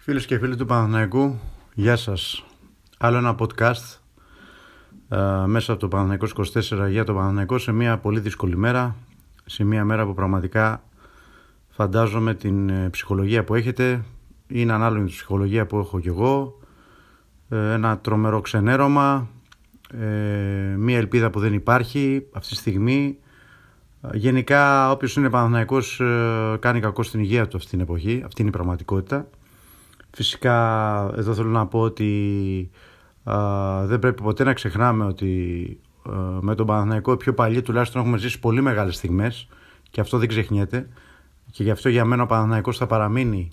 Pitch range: 105-125 Hz